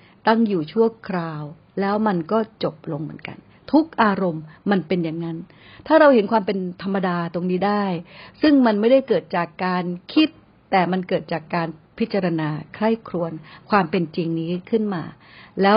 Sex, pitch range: female, 165-205 Hz